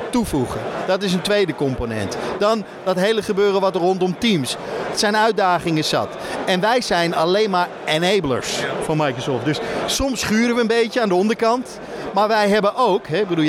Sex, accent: male, Dutch